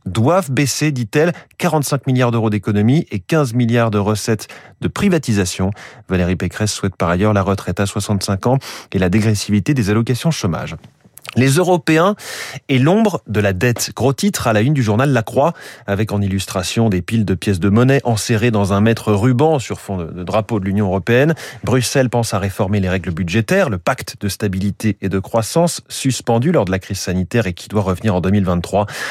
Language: French